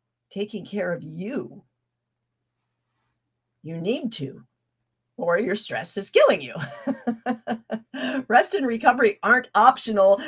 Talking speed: 105 wpm